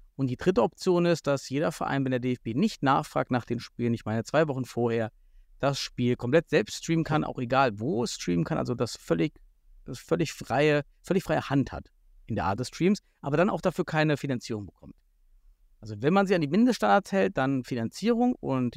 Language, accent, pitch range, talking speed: German, German, 120-160 Hz, 210 wpm